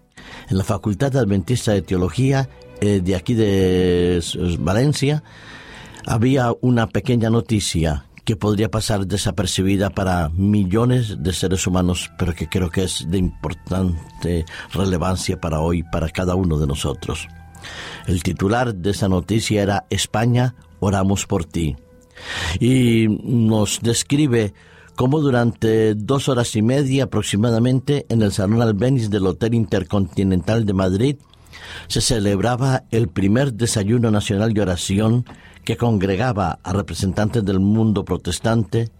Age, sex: 50-69, male